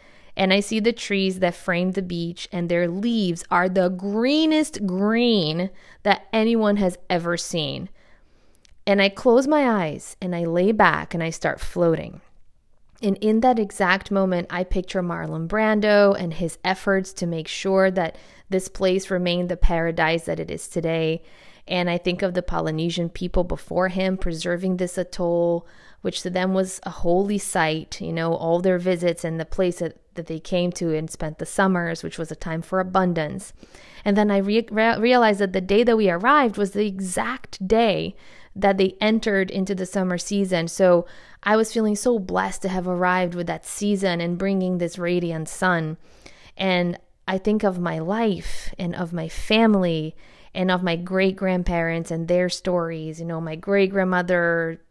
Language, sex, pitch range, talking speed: English, female, 170-200 Hz, 175 wpm